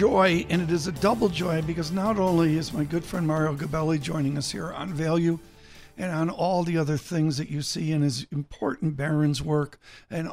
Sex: male